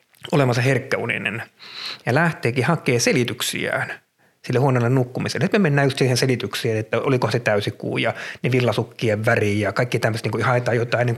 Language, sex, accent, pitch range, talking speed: Finnish, male, native, 115-160 Hz, 165 wpm